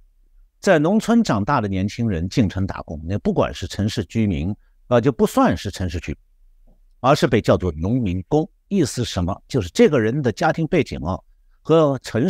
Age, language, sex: 50-69, Chinese, male